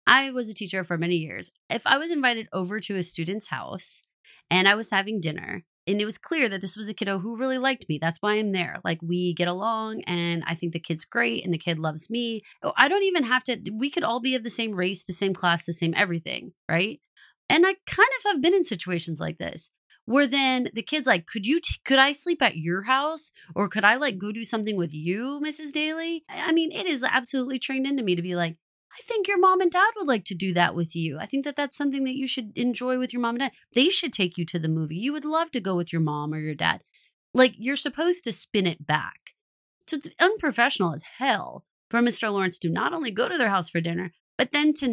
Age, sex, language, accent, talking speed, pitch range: 30-49, female, English, American, 255 wpm, 180-275 Hz